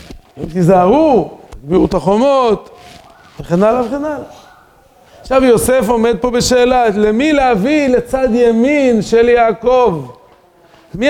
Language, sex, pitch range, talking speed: Hebrew, male, 195-245 Hz, 115 wpm